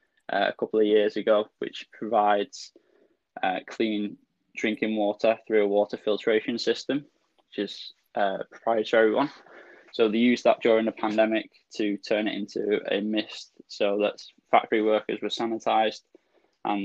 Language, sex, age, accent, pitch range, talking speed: English, male, 10-29, British, 105-115 Hz, 150 wpm